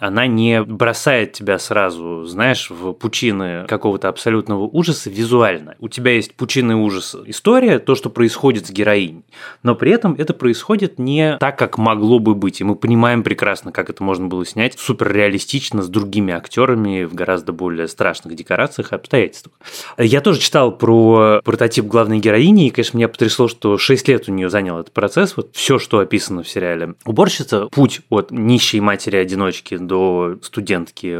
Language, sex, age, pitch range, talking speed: Russian, male, 20-39, 105-130 Hz, 165 wpm